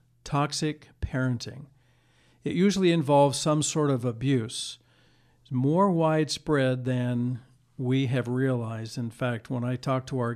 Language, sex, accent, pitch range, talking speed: English, male, American, 125-145 Hz, 135 wpm